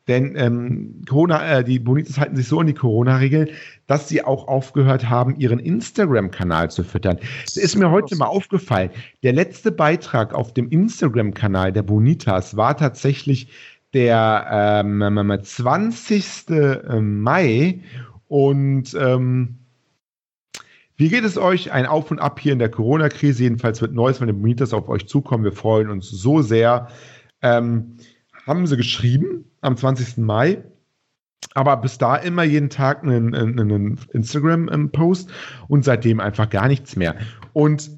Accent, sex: German, male